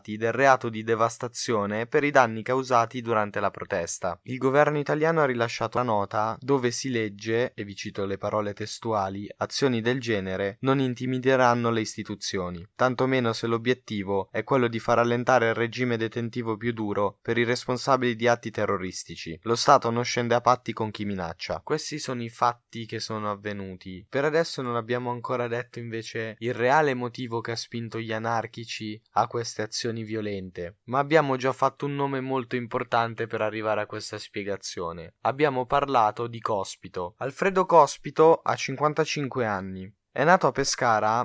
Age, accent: 20-39, native